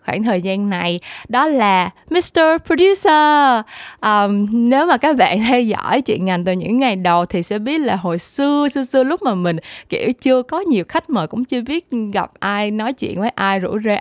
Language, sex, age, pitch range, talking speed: Vietnamese, female, 10-29, 190-255 Hz, 210 wpm